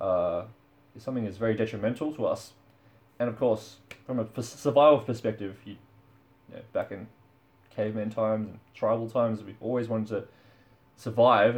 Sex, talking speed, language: male, 155 wpm, English